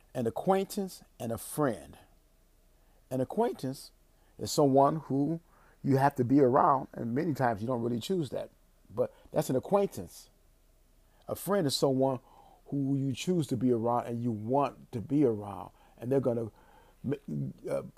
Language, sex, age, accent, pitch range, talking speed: English, male, 40-59, American, 115-140 Hz, 160 wpm